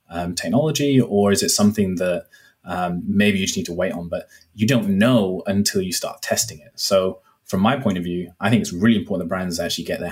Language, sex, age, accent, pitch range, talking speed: English, male, 20-39, British, 95-145 Hz, 235 wpm